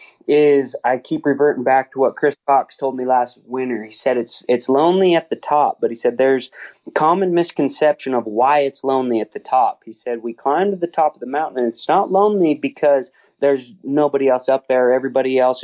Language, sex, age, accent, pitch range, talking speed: English, male, 30-49, American, 125-150 Hz, 220 wpm